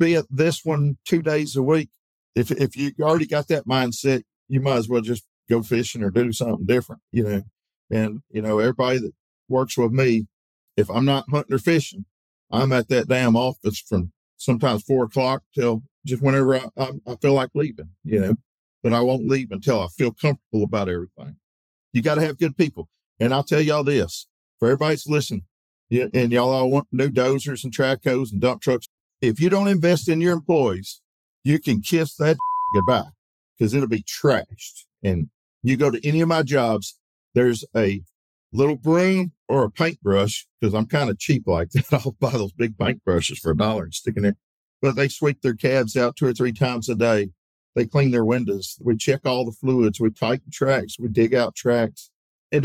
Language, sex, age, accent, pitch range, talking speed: English, male, 50-69, American, 115-145 Hz, 200 wpm